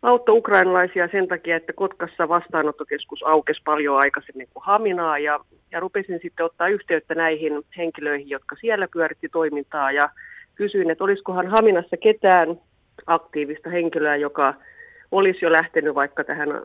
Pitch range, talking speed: 155-200 Hz, 135 wpm